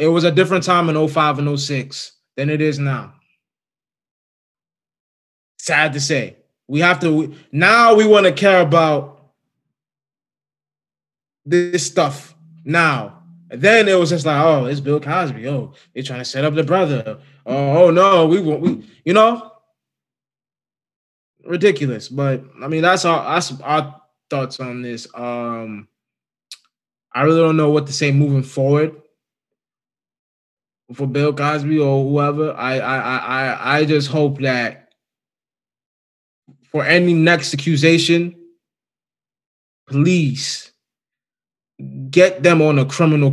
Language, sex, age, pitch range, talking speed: English, male, 20-39, 135-170 Hz, 135 wpm